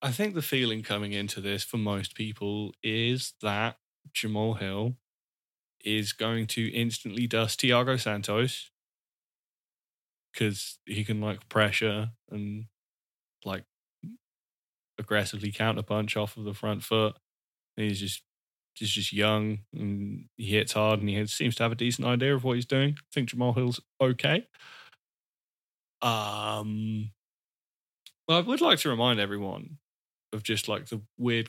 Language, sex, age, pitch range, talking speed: English, male, 20-39, 105-120 Hz, 145 wpm